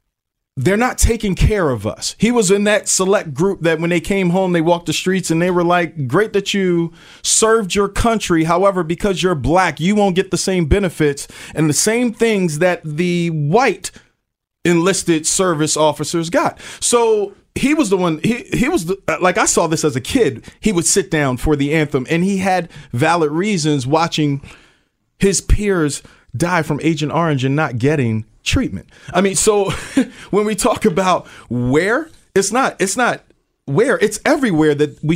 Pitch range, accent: 155-200 Hz, American